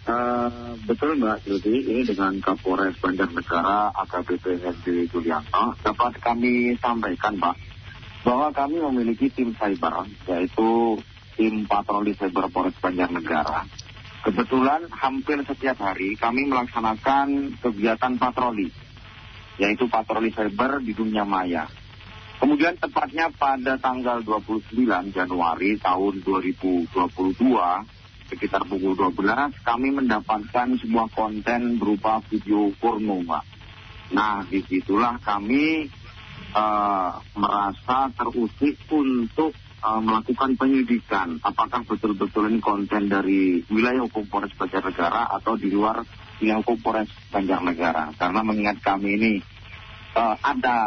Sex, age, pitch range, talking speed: male, 30-49, 100-120 Hz, 110 wpm